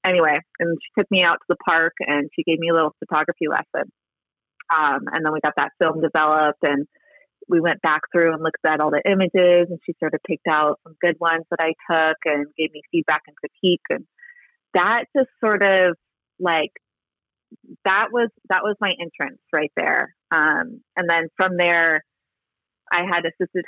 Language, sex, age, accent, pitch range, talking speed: English, female, 30-49, American, 155-195 Hz, 195 wpm